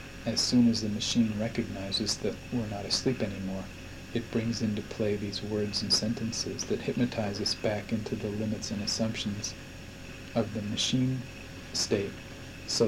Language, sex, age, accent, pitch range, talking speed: English, male, 40-59, American, 100-120 Hz, 155 wpm